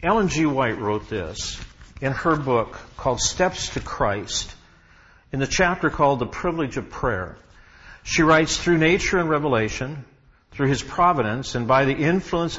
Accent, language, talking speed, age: American, English, 155 wpm, 60-79